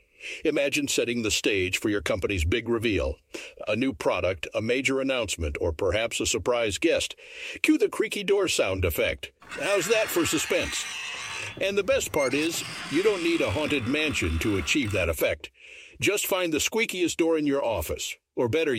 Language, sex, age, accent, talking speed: English, male, 60-79, American, 175 wpm